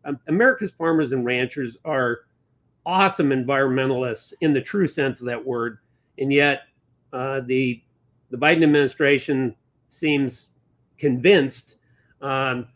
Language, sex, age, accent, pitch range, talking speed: English, male, 50-69, American, 130-155 Hz, 115 wpm